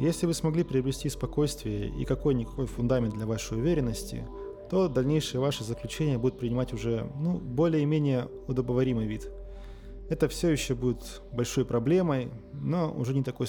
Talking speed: 145 wpm